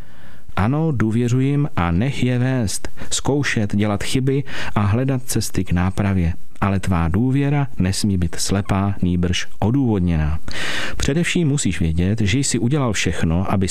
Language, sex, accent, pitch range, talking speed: Czech, male, native, 95-135 Hz, 130 wpm